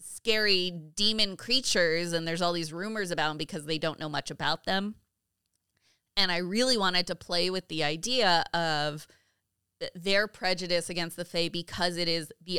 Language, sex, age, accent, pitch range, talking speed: English, female, 20-39, American, 160-185 Hz, 175 wpm